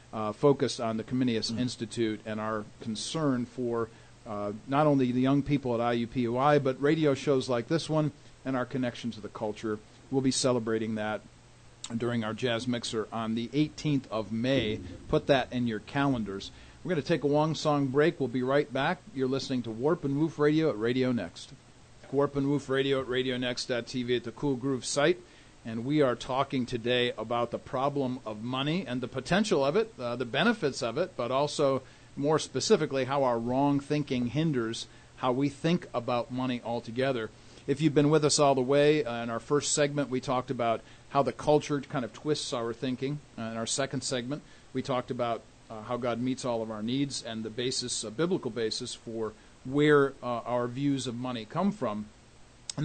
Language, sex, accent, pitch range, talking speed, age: English, male, American, 115-140 Hz, 200 wpm, 40-59